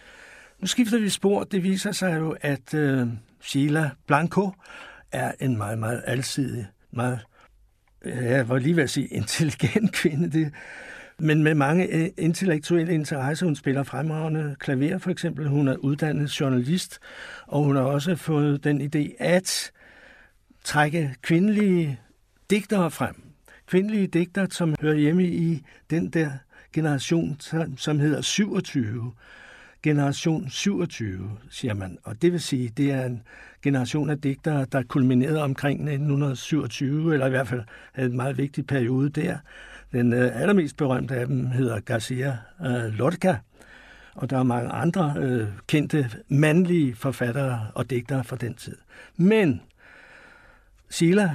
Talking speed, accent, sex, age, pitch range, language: 145 wpm, native, male, 60-79, 130-165 Hz, Danish